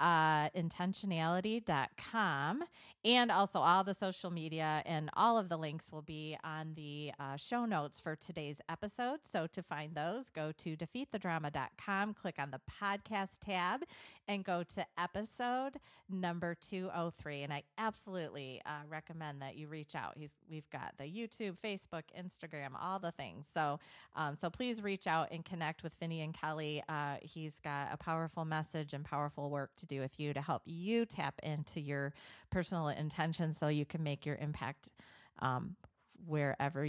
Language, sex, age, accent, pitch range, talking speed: English, female, 30-49, American, 155-195 Hz, 165 wpm